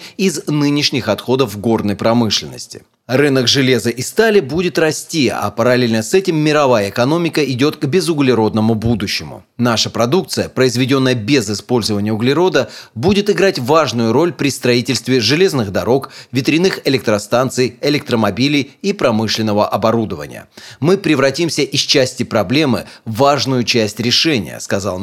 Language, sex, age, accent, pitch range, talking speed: Russian, male, 30-49, native, 115-150 Hz, 120 wpm